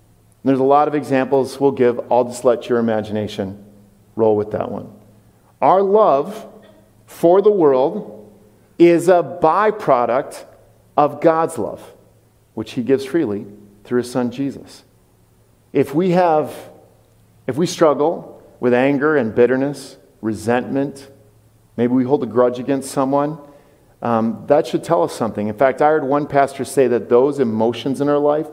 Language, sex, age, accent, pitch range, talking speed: English, male, 50-69, American, 110-140 Hz, 150 wpm